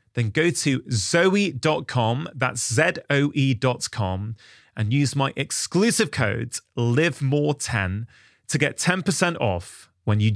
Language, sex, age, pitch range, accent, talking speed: English, male, 30-49, 110-160 Hz, British, 115 wpm